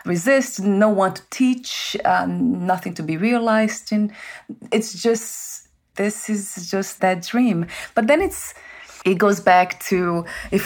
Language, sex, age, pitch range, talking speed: English, female, 30-49, 155-210 Hz, 145 wpm